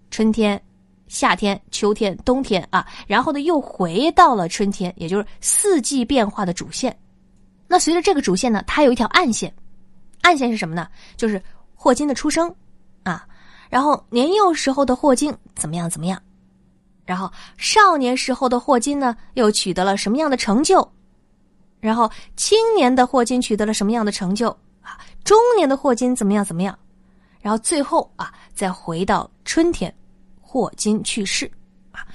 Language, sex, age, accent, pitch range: Chinese, female, 20-39, native, 190-290 Hz